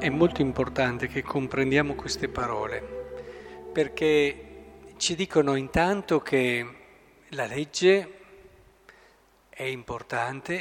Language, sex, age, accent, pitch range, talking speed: Italian, male, 50-69, native, 140-205 Hz, 90 wpm